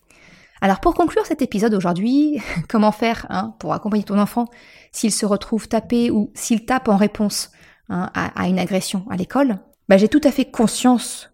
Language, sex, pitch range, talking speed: French, female, 195-250 Hz, 180 wpm